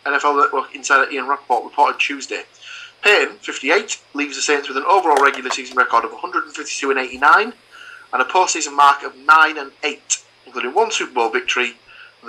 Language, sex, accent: English, male, British